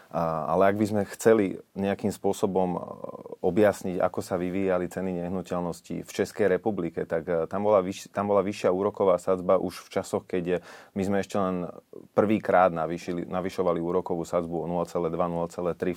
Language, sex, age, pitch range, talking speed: Slovak, male, 30-49, 85-95 Hz, 150 wpm